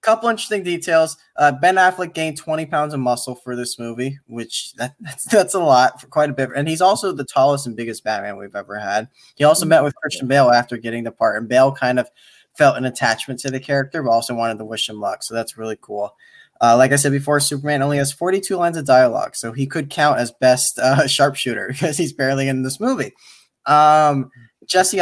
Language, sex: English, male